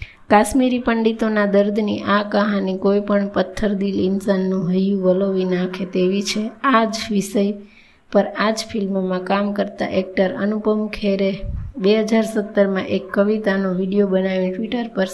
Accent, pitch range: native, 195-215 Hz